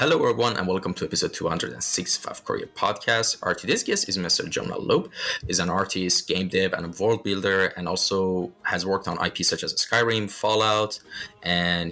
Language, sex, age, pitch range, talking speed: English, male, 20-39, 90-105 Hz, 180 wpm